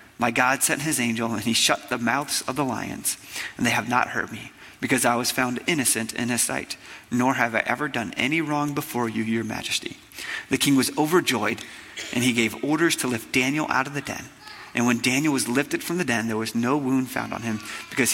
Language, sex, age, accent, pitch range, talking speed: English, male, 30-49, American, 120-145 Hz, 230 wpm